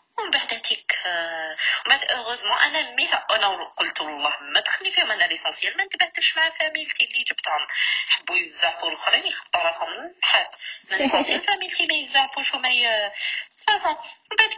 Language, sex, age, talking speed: Arabic, female, 30-49, 130 wpm